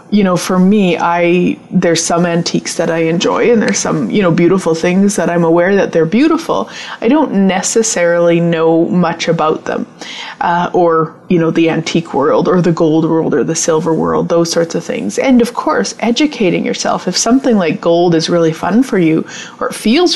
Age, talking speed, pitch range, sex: 30-49, 200 wpm, 170-235 Hz, female